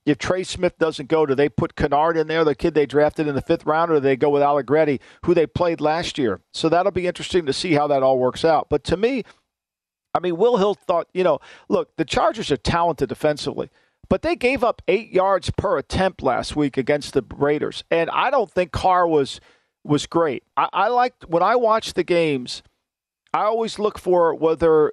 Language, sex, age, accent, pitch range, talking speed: English, male, 50-69, American, 150-210 Hz, 220 wpm